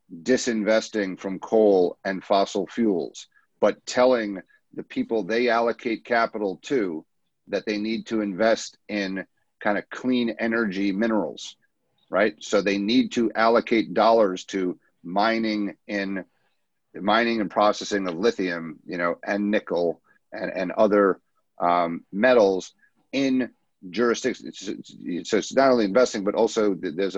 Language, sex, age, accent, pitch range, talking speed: English, male, 40-59, American, 95-115 Hz, 130 wpm